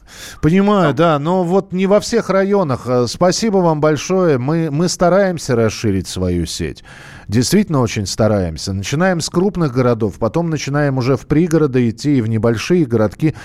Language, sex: Russian, male